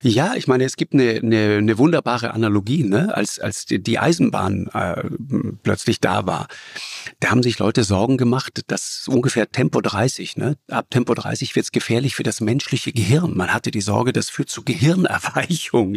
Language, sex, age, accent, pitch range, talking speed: German, male, 50-69, German, 115-135 Hz, 180 wpm